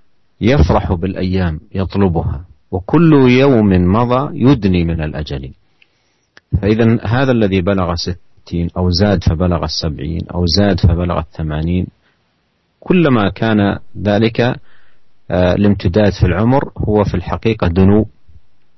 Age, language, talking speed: 40-59, Malay, 100 wpm